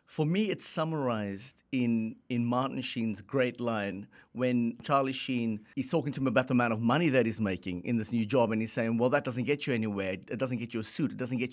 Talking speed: 245 wpm